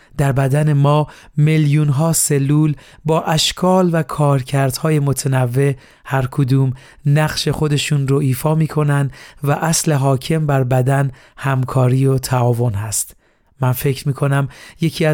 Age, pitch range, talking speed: 40-59, 130-155 Hz, 120 wpm